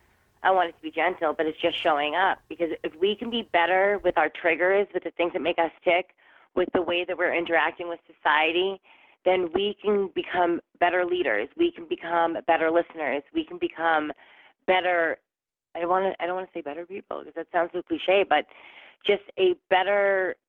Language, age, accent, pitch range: English, 20-39, American, 170-205 Hz